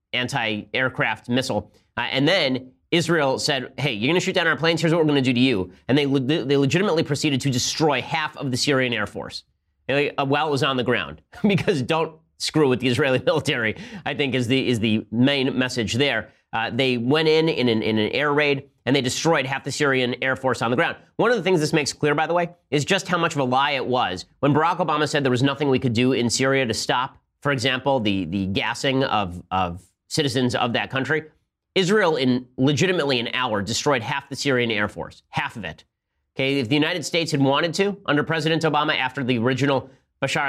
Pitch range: 120-150 Hz